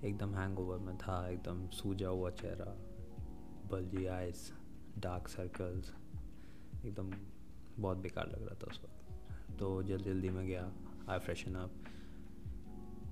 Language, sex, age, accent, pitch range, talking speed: Hindi, male, 20-39, native, 90-105 Hz, 135 wpm